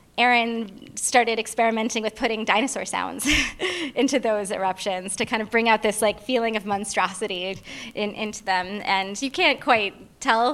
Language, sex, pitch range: English, female, 190-230 Hz